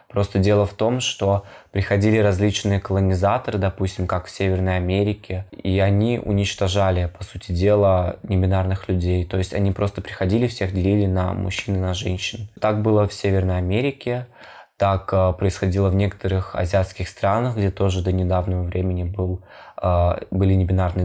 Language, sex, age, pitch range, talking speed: Russian, male, 20-39, 95-105 Hz, 150 wpm